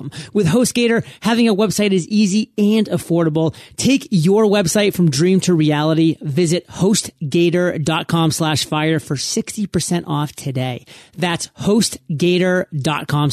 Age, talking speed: 30-49, 115 wpm